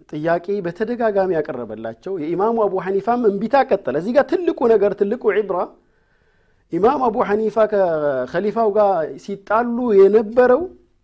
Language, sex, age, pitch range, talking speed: Amharic, male, 50-69, 155-225 Hz, 110 wpm